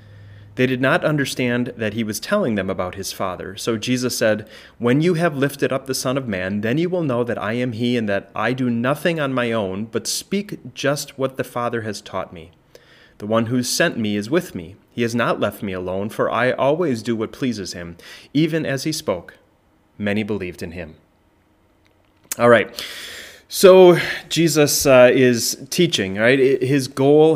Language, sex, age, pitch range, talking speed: English, male, 30-49, 100-130 Hz, 195 wpm